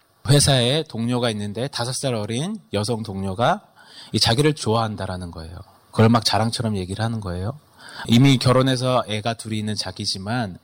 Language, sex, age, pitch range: Korean, male, 30-49, 100-135 Hz